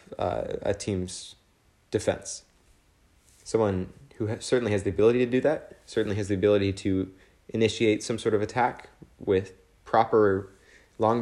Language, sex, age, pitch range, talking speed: English, male, 20-39, 95-110 Hz, 145 wpm